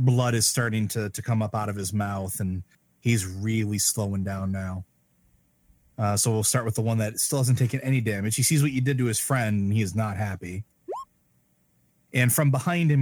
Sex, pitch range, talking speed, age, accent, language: male, 95-130 Hz, 215 wpm, 30-49, American, English